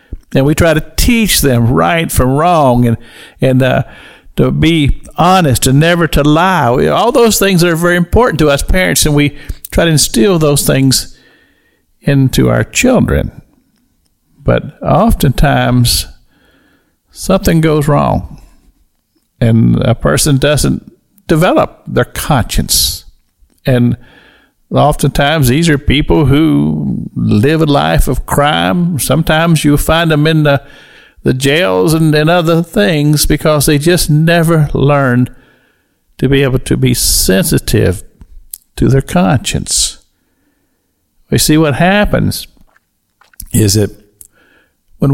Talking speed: 125 wpm